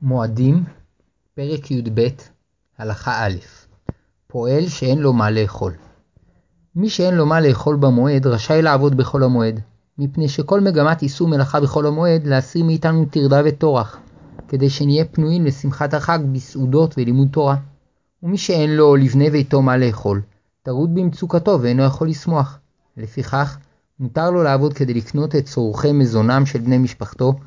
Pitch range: 125-150 Hz